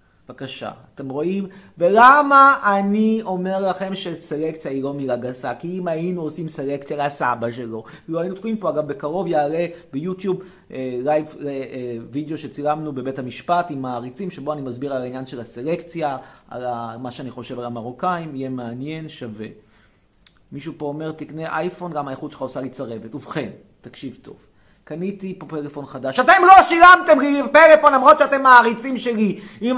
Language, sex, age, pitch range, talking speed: Hebrew, male, 30-49, 135-200 Hz, 165 wpm